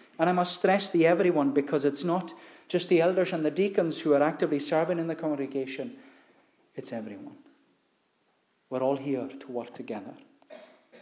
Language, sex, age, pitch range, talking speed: English, male, 40-59, 140-180 Hz, 165 wpm